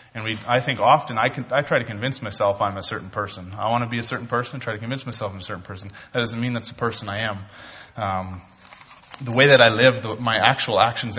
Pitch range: 105-120 Hz